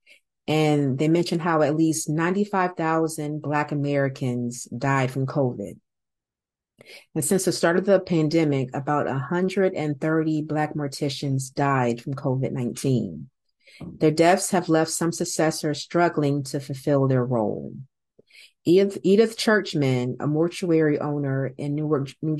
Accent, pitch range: American, 135-160 Hz